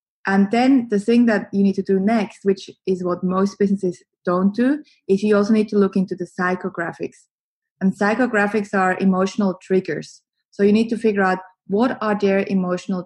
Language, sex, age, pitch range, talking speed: English, female, 20-39, 190-225 Hz, 190 wpm